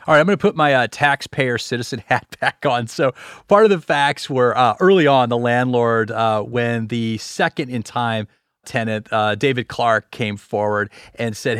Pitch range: 115-140 Hz